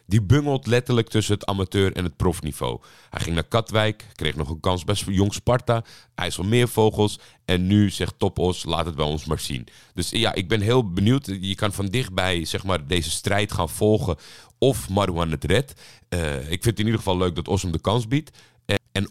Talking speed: 205 wpm